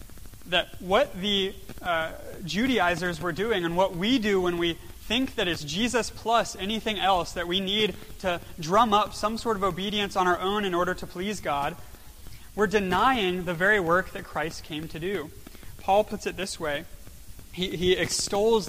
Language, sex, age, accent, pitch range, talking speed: English, male, 30-49, American, 155-195 Hz, 180 wpm